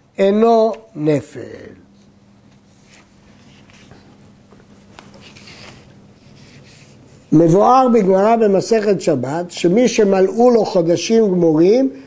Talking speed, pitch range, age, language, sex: 55 wpm, 165-235 Hz, 60-79, Hebrew, male